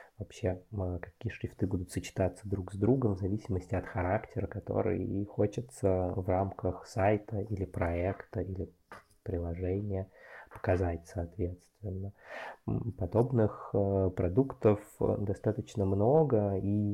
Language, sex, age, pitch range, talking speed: Russian, male, 20-39, 95-110 Hz, 105 wpm